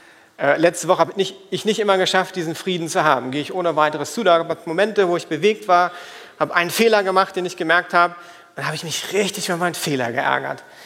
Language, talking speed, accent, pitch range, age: German, 245 wpm, German, 155-200 Hz, 40-59